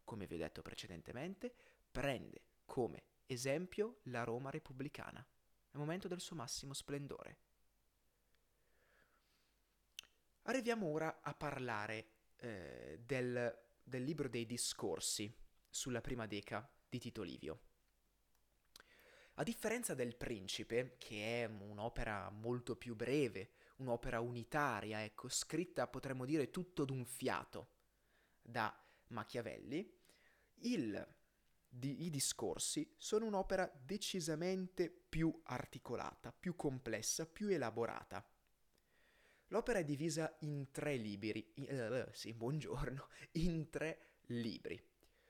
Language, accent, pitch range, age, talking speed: Italian, native, 115-160 Hz, 30-49, 100 wpm